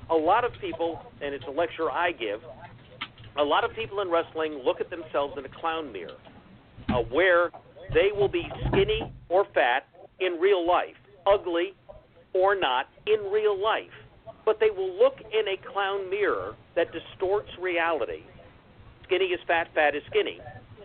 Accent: American